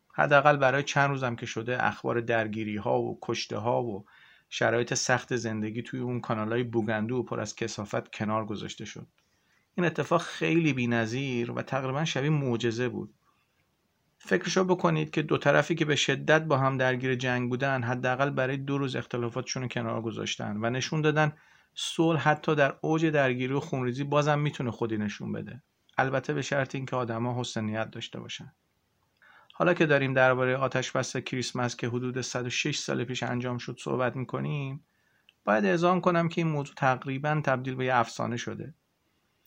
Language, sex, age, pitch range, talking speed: Persian, male, 40-59, 125-150 Hz, 165 wpm